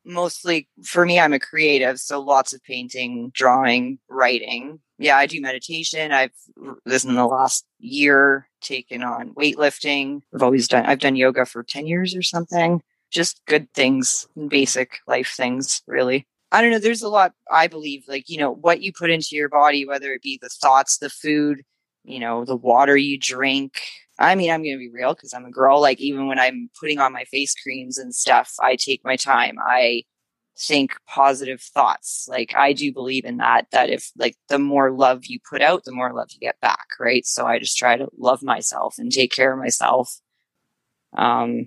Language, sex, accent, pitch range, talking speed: English, female, American, 130-155 Hz, 200 wpm